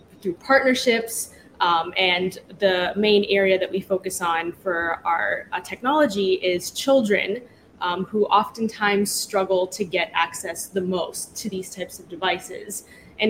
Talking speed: 145 wpm